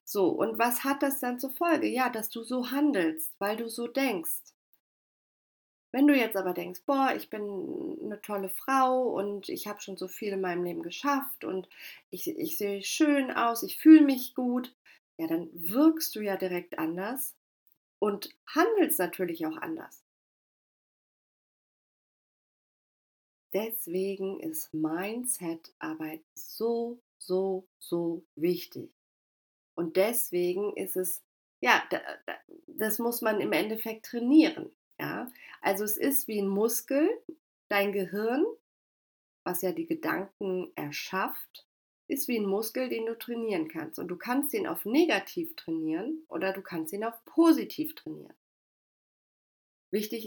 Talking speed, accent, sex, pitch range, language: 135 wpm, German, female, 190-290 Hz, German